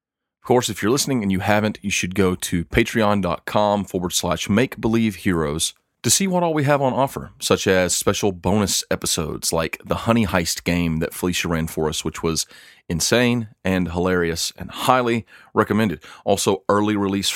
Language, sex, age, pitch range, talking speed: English, male, 40-59, 90-110 Hz, 180 wpm